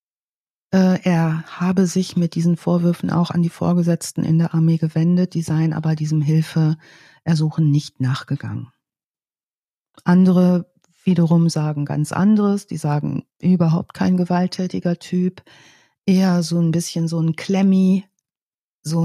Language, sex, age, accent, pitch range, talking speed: German, female, 40-59, German, 165-195 Hz, 125 wpm